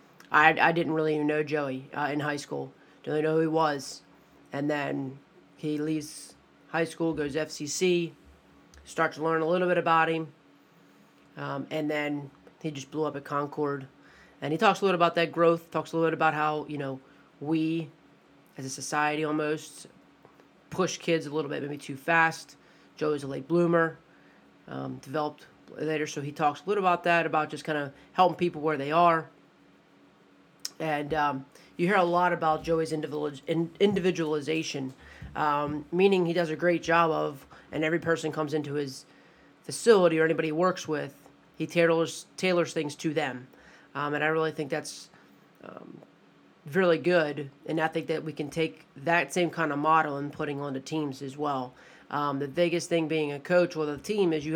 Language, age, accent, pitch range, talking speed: English, 30-49, American, 145-165 Hz, 185 wpm